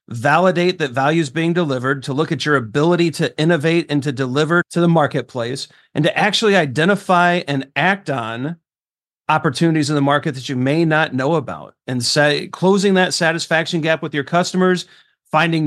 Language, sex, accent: English, male, American